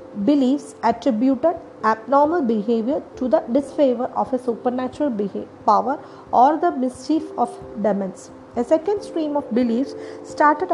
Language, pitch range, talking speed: English, 220-290 Hz, 125 wpm